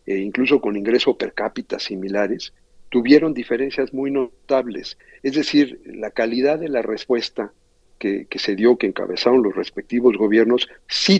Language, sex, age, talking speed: Spanish, male, 50-69, 150 wpm